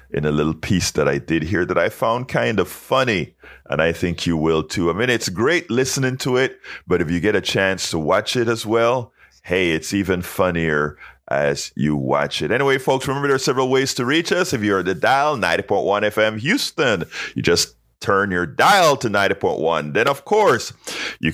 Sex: male